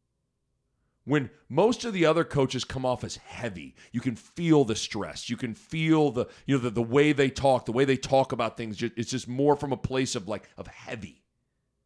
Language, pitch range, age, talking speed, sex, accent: English, 115-155 Hz, 40-59, 215 wpm, male, American